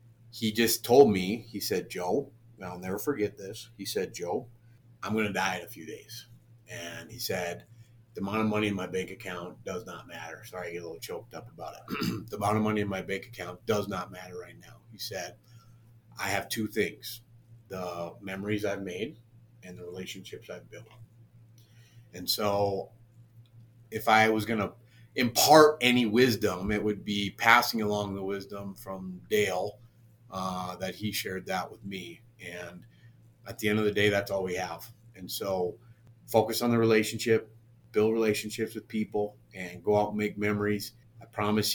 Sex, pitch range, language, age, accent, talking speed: male, 100-115 Hz, English, 30-49, American, 185 wpm